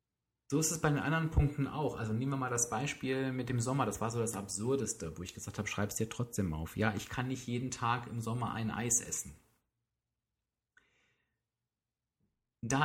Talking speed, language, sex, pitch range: 200 wpm, German, male, 100-130 Hz